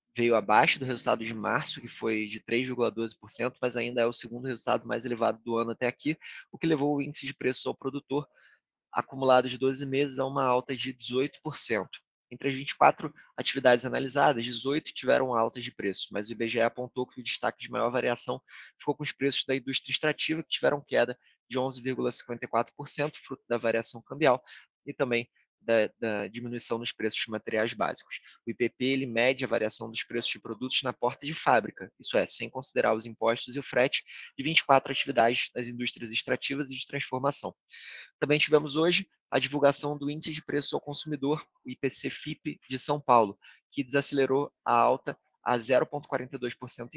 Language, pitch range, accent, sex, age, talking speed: Portuguese, 120-140 Hz, Brazilian, male, 20-39, 180 wpm